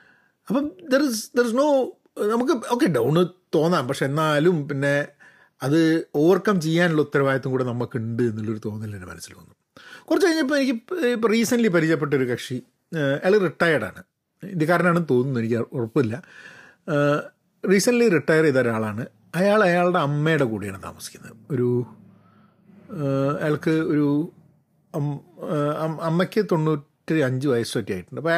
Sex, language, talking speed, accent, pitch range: male, Malayalam, 120 wpm, native, 135-205 Hz